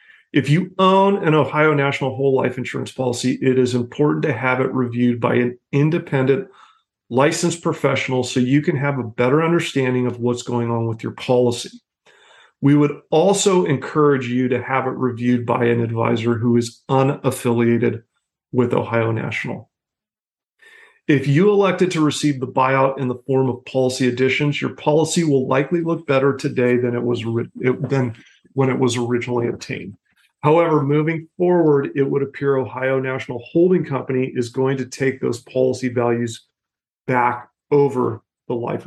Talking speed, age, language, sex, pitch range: 160 wpm, 40-59, English, male, 125-150 Hz